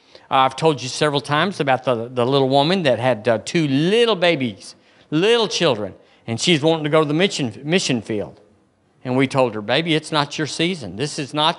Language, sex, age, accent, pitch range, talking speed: English, male, 50-69, American, 120-165 Hz, 205 wpm